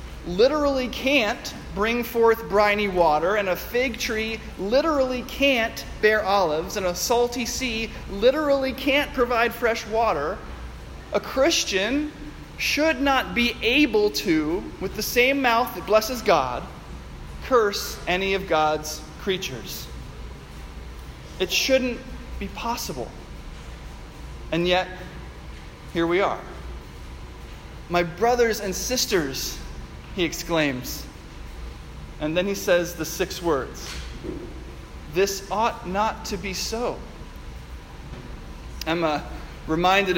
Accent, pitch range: American, 160-230 Hz